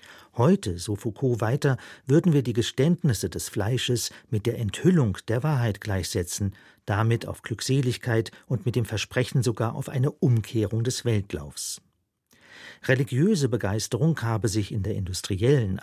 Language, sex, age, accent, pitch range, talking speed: German, male, 50-69, German, 110-140 Hz, 135 wpm